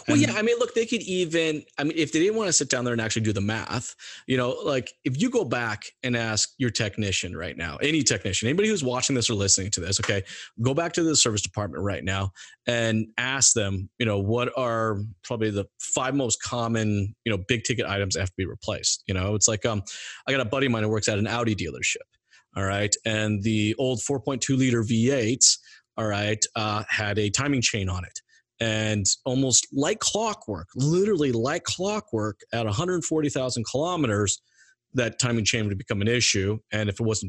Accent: American